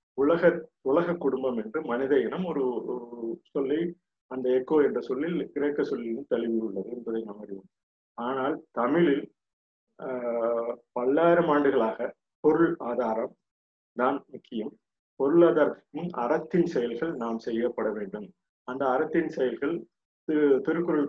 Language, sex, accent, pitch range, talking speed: Tamil, male, native, 115-155 Hz, 100 wpm